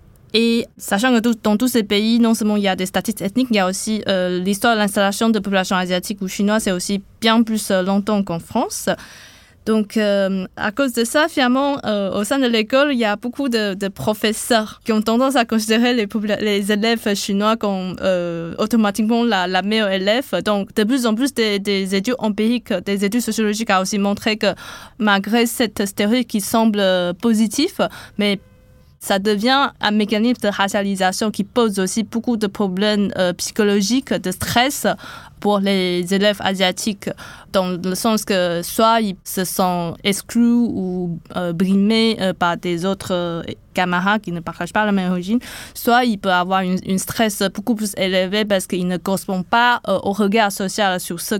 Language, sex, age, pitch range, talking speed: French, female, 20-39, 190-225 Hz, 185 wpm